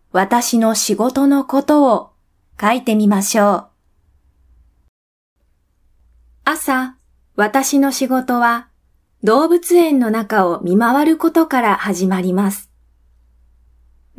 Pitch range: 160-255 Hz